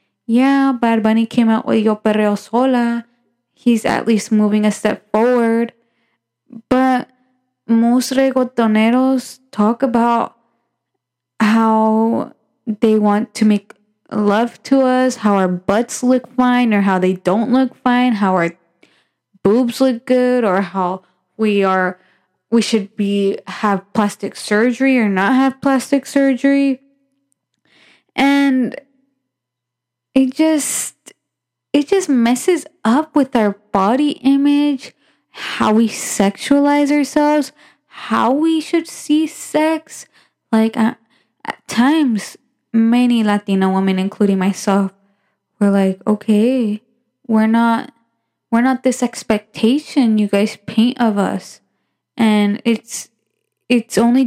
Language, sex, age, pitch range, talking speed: English, female, 10-29, 210-260 Hz, 120 wpm